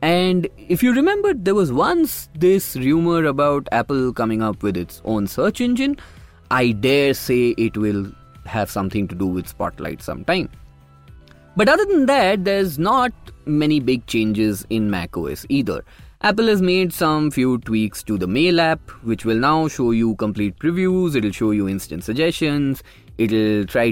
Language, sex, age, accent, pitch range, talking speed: English, male, 20-39, Indian, 105-160 Hz, 165 wpm